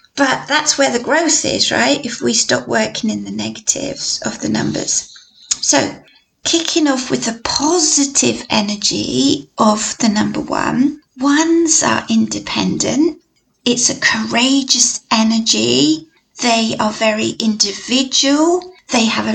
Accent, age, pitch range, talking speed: British, 30-49, 220-295 Hz, 130 wpm